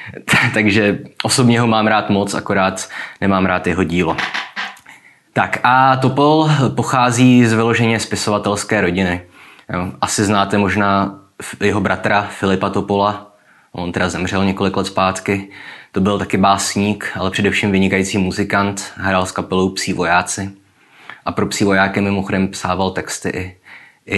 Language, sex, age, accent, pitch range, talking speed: Czech, male, 20-39, native, 95-105 Hz, 135 wpm